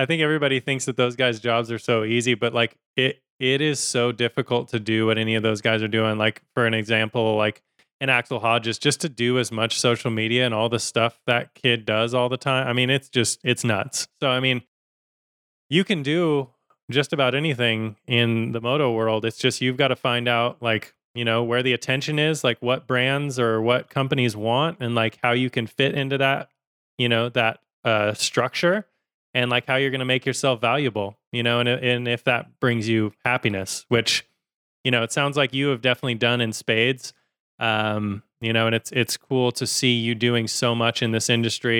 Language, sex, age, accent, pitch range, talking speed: English, male, 20-39, American, 115-130 Hz, 215 wpm